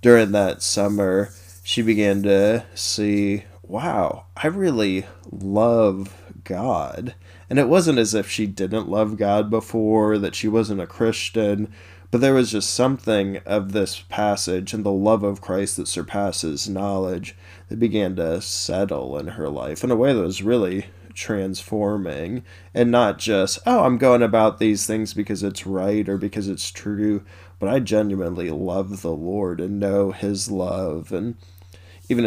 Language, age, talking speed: English, 20-39, 160 wpm